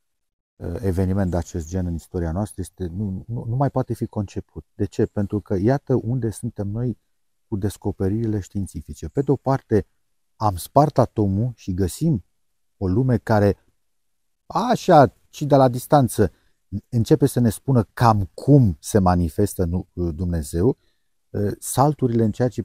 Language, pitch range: Romanian, 95-130 Hz